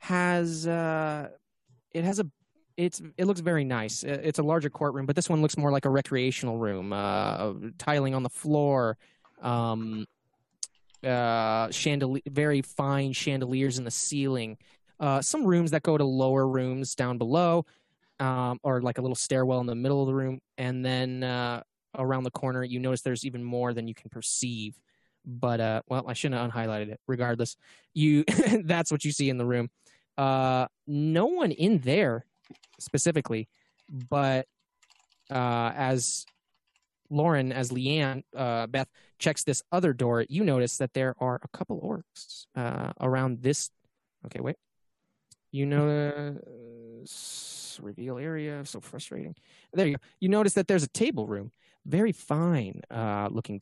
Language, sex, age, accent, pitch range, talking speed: English, male, 20-39, American, 120-150 Hz, 160 wpm